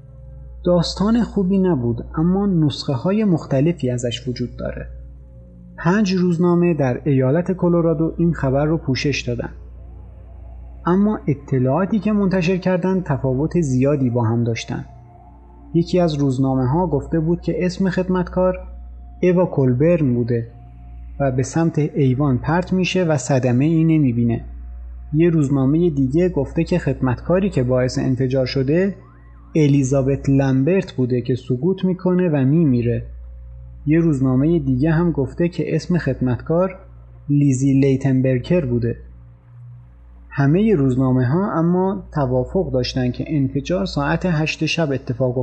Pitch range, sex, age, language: 120-170 Hz, male, 30-49, Persian